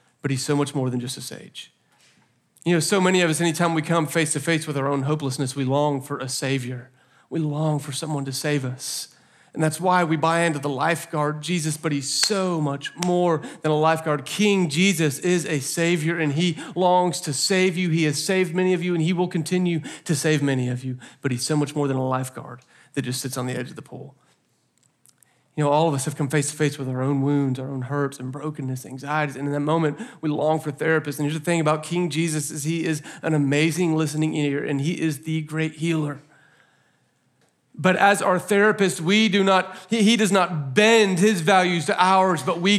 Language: English